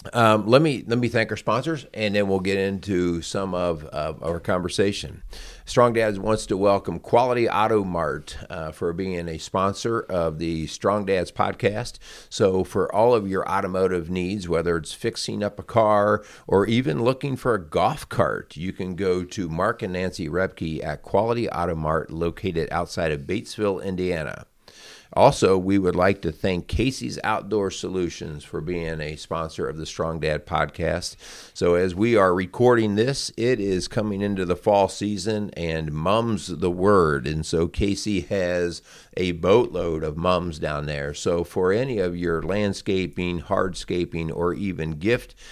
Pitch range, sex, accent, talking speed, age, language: 85-105 Hz, male, American, 170 wpm, 50-69, English